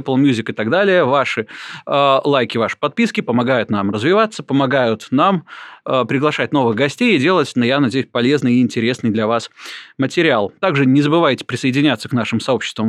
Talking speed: 165 wpm